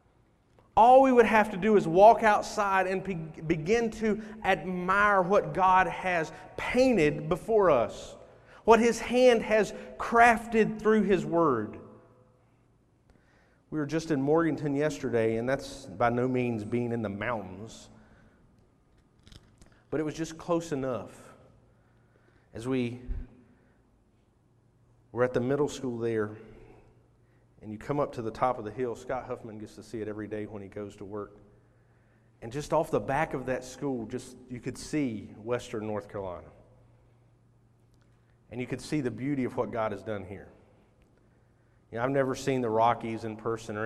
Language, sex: English, male